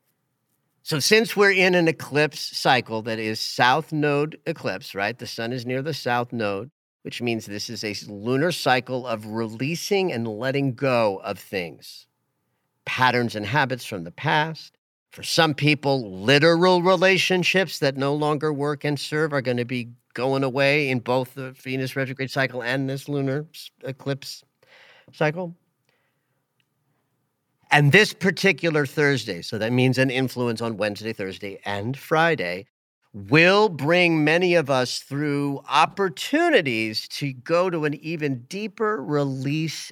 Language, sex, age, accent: English, male, 50-69, American